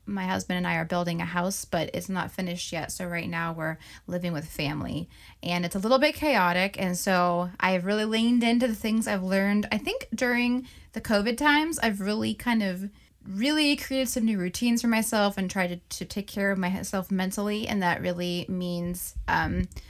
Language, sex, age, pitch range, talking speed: English, female, 20-39, 180-225 Hz, 205 wpm